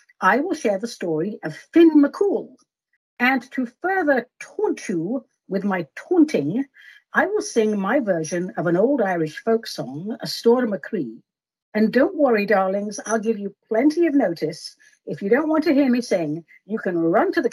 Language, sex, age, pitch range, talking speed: English, female, 60-79, 190-305 Hz, 180 wpm